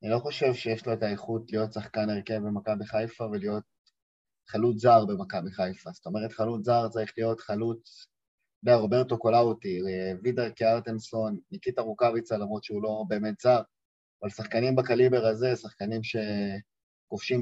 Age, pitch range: 20-39, 110-145 Hz